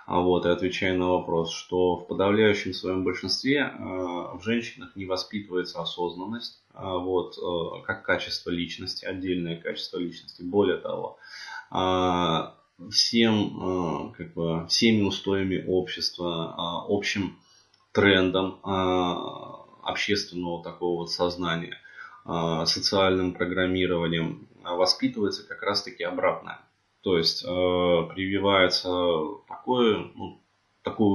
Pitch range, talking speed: 85-100 Hz, 100 wpm